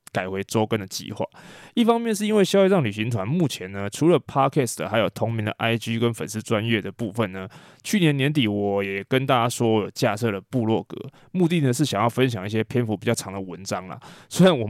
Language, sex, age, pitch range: Chinese, male, 20-39, 105-150 Hz